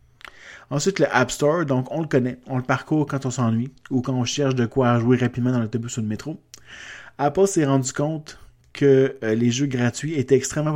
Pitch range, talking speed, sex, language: 120-140 Hz, 205 wpm, male, French